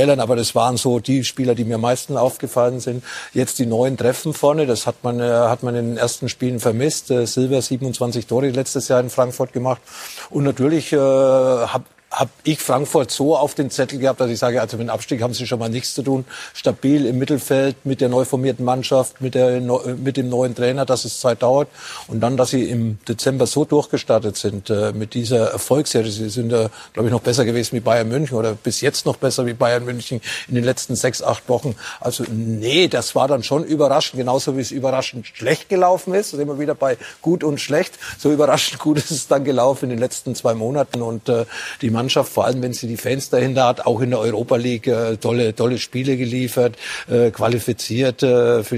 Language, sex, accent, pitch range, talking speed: German, male, German, 120-135 Hz, 210 wpm